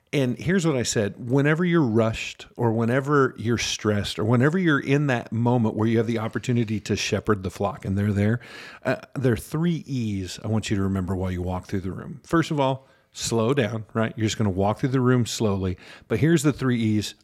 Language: English